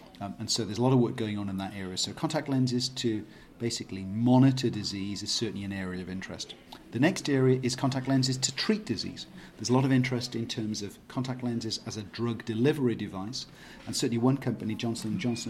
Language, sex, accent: Swedish, male, British